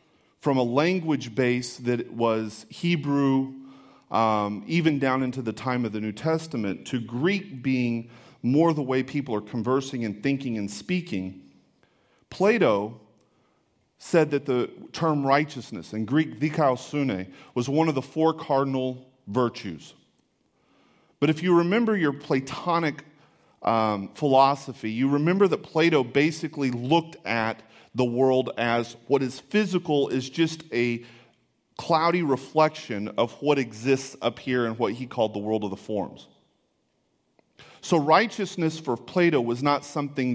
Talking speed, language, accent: 135 wpm, English, American